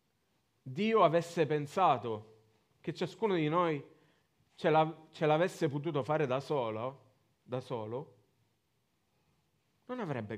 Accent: native